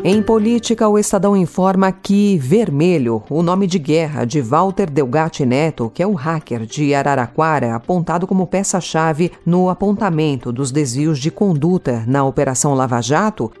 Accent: Brazilian